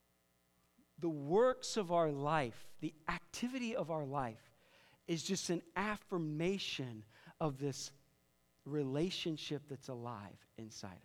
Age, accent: 40-59, American